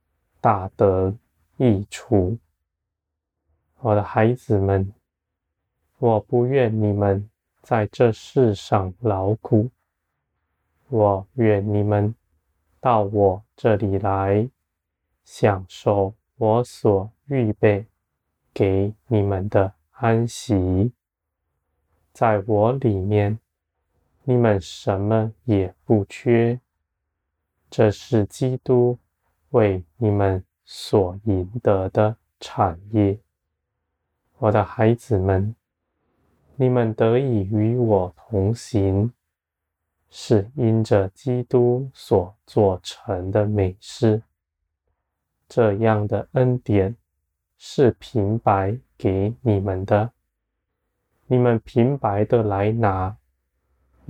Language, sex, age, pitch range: Chinese, male, 20-39, 85-110 Hz